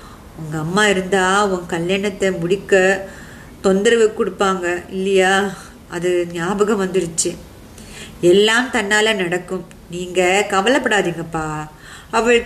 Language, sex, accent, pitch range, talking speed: Tamil, female, native, 185-235 Hz, 85 wpm